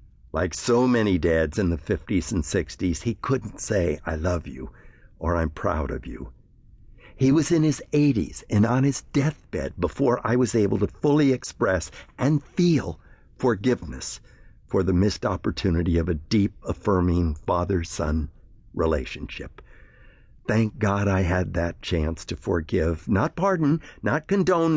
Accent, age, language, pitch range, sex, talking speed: American, 60-79, English, 85-125 Hz, male, 150 wpm